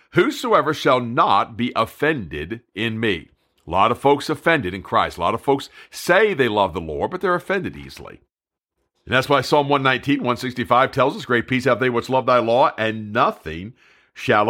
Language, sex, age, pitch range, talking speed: English, male, 50-69, 120-145 Hz, 190 wpm